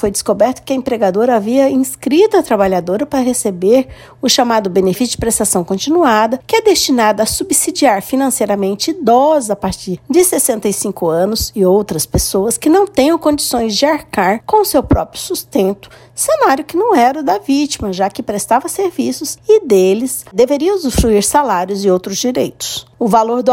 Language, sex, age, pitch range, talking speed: Portuguese, female, 60-79, 205-300 Hz, 165 wpm